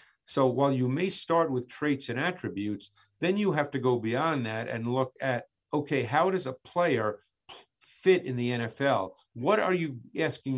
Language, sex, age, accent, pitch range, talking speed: English, male, 50-69, American, 120-155 Hz, 180 wpm